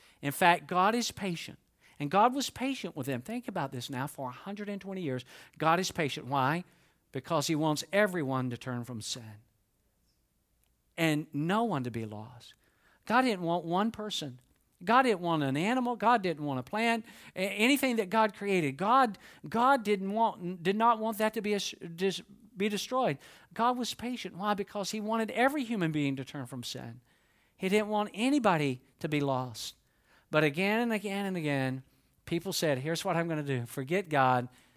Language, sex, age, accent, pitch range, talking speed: English, male, 50-69, American, 130-200 Hz, 175 wpm